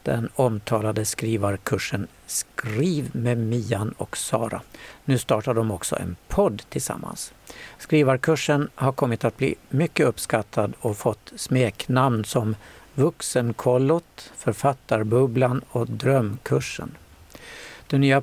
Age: 60-79